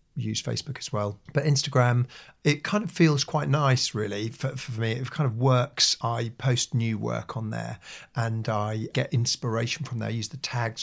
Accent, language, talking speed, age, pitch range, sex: British, English, 200 wpm, 40-59, 110-130 Hz, male